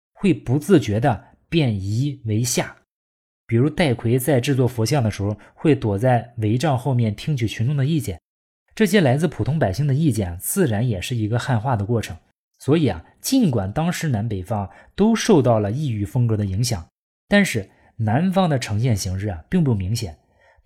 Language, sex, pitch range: Chinese, male, 105-150 Hz